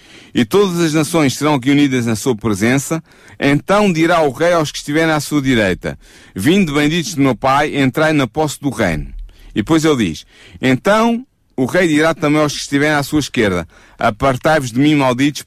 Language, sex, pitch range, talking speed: Portuguese, male, 115-150 Hz, 185 wpm